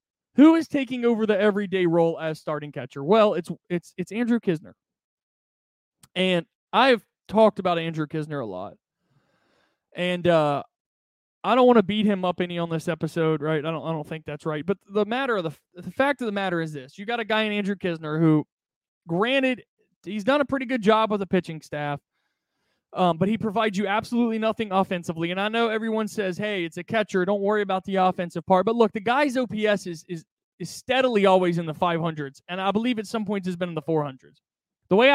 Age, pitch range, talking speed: 20-39, 170-220 Hz, 215 wpm